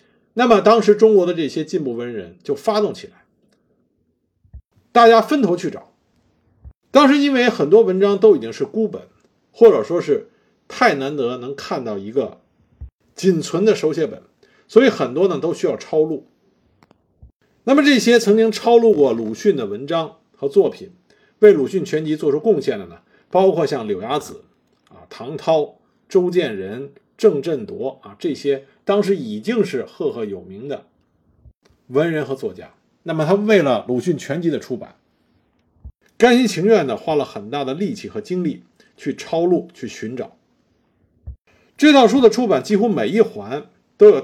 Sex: male